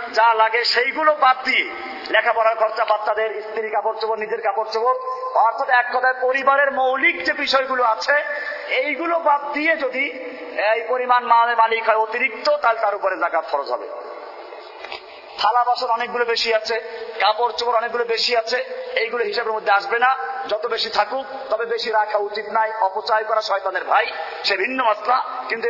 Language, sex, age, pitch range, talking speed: Bengali, male, 40-59, 225-275 Hz, 100 wpm